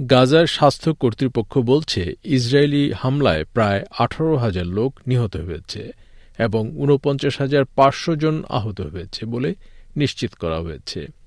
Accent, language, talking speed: native, Bengali, 115 wpm